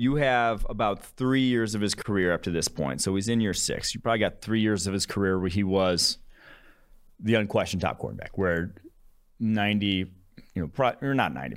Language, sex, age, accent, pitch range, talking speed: English, male, 30-49, American, 90-110 Hz, 205 wpm